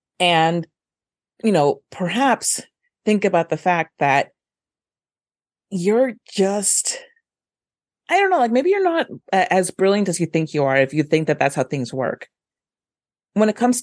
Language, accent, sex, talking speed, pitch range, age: English, American, female, 155 wpm, 160-210 Hz, 30-49